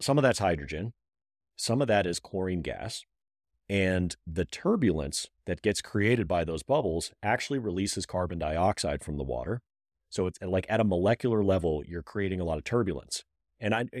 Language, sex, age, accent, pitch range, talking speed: English, male, 40-59, American, 85-115 Hz, 175 wpm